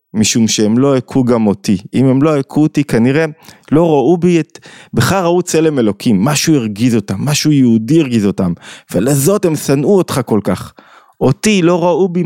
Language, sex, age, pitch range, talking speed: Hebrew, male, 20-39, 110-155 Hz, 180 wpm